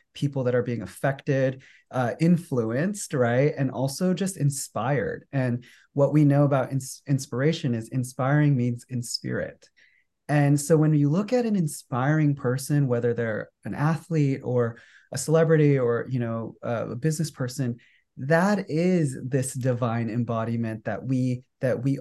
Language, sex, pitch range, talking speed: English, male, 125-150 Hz, 145 wpm